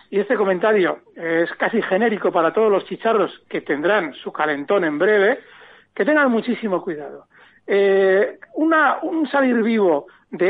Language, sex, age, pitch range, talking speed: Spanish, male, 60-79, 190-290 Hz, 150 wpm